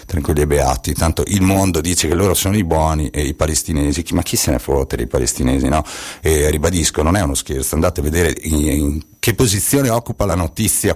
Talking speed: 210 wpm